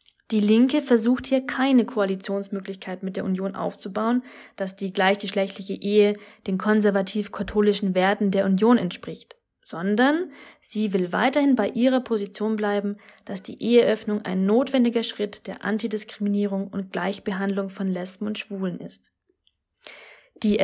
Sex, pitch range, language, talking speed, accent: female, 195-245 Hz, German, 130 wpm, German